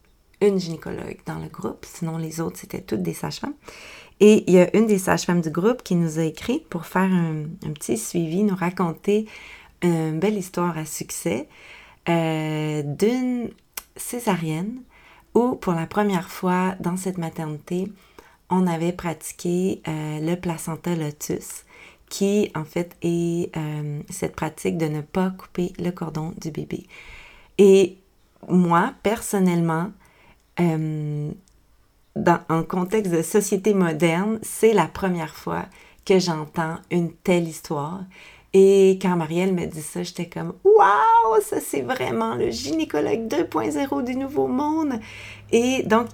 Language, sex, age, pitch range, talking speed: French, female, 30-49, 165-205 Hz, 150 wpm